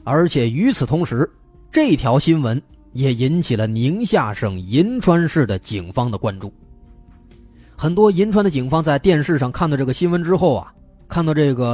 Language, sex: Chinese, male